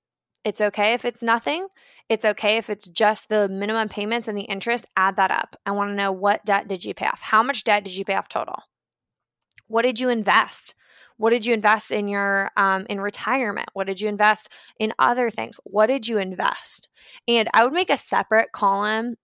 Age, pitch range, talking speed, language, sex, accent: 20-39, 195-235 Hz, 210 wpm, English, female, American